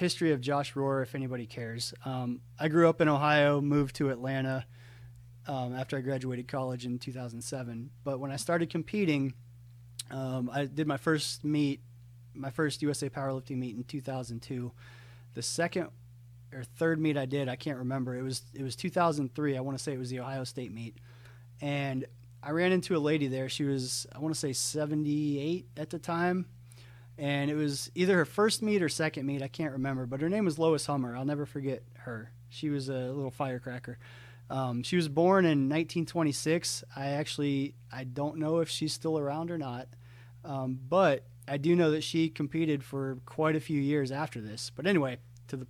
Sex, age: male, 30-49